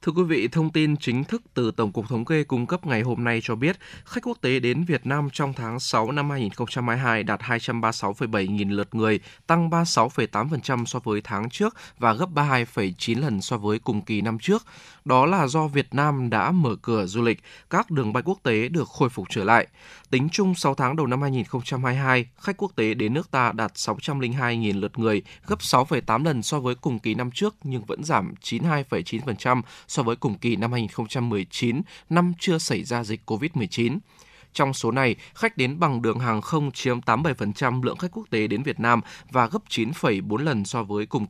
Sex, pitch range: male, 115-155 Hz